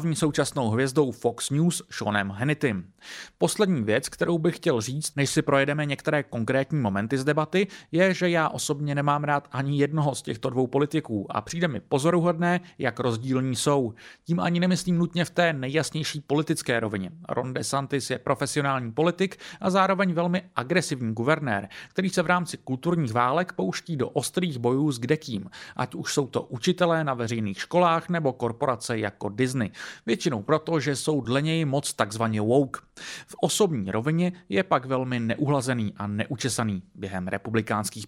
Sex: male